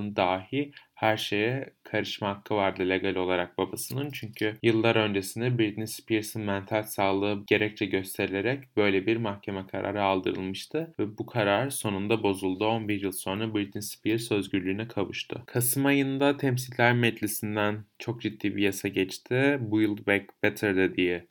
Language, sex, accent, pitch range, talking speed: Turkish, male, native, 100-115 Hz, 140 wpm